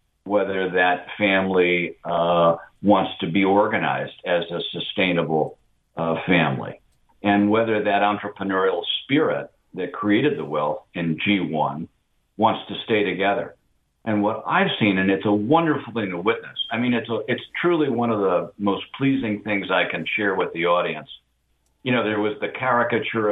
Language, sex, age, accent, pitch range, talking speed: English, male, 50-69, American, 85-105 Hz, 160 wpm